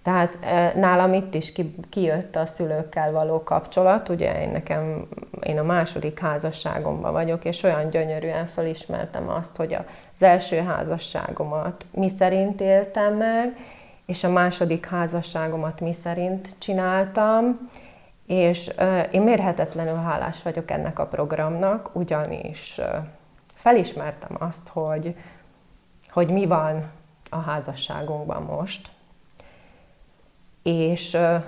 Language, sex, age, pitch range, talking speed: Hungarian, female, 30-49, 155-190 Hz, 115 wpm